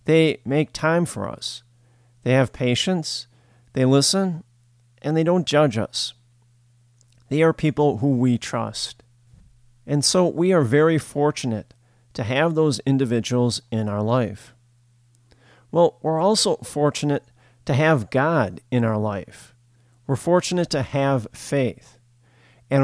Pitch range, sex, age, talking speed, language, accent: 120-145 Hz, male, 50-69, 130 wpm, English, American